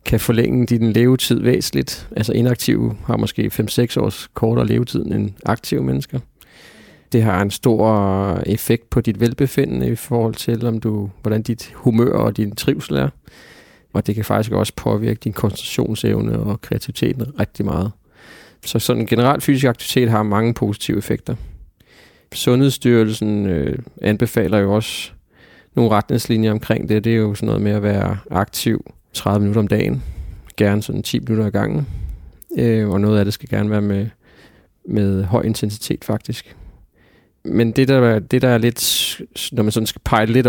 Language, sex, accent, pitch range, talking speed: Danish, male, native, 105-120 Hz, 165 wpm